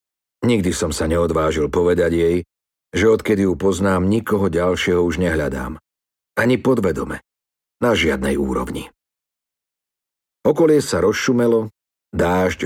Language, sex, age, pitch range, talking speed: Slovak, male, 50-69, 80-100 Hz, 110 wpm